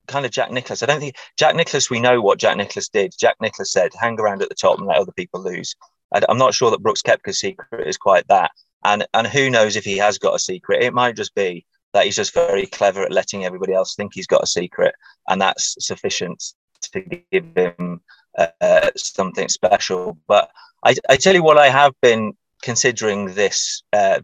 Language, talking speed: English, 220 wpm